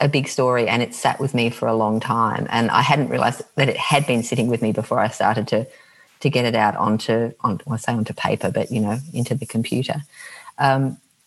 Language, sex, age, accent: English, female, 40-59, Australian